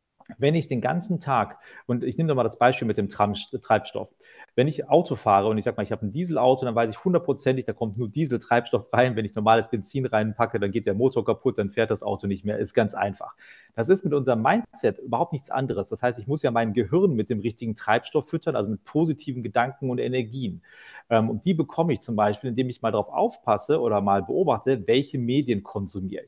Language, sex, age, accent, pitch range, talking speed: German, male, 40-59, German, 115-140 Hz, 225 wpm